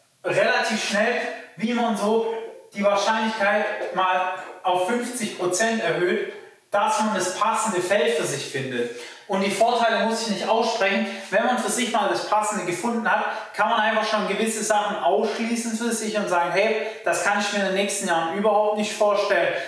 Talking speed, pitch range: 175 wpm, 175-215 Hz